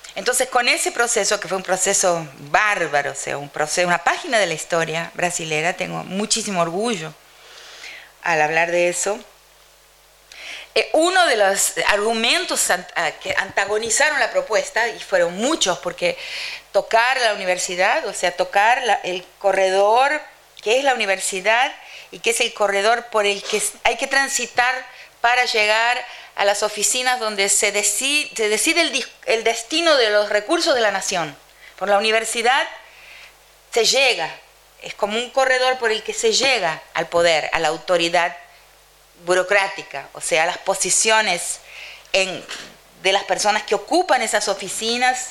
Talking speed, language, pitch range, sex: 145 wpm, Spanish, 180-240 Hz, female